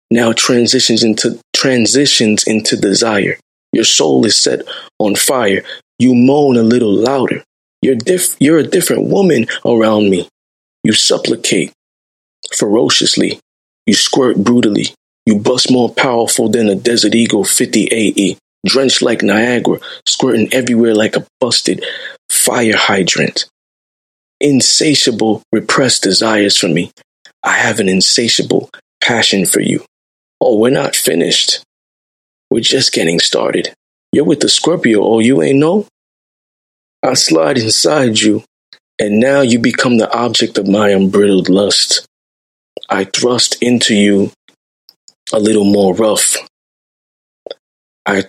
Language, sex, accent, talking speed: English, male, American, 125 wpm